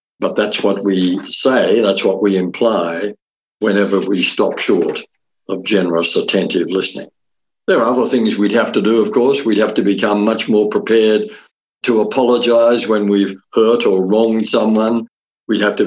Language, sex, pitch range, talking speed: English, male, 105-130 Hz, 170 wpm